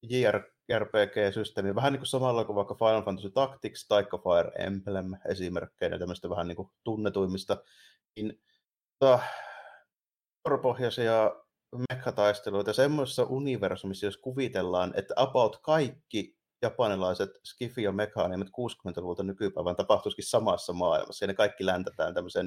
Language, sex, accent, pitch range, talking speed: Finnish, male, native, 100-125 Hz, 120 wpm